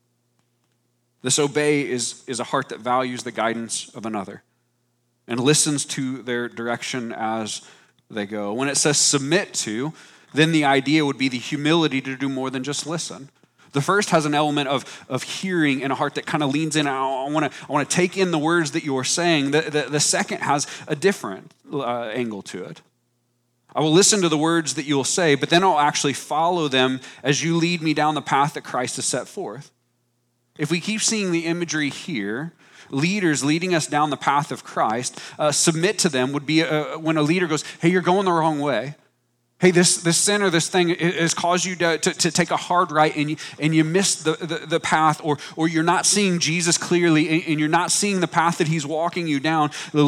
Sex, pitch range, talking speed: male, 135-170 Hz, 220 wpm